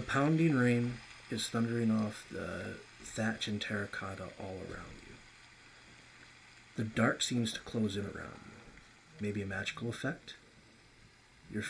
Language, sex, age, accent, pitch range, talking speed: English, male, 30-49, American, 105-155 Hz, 135 wpm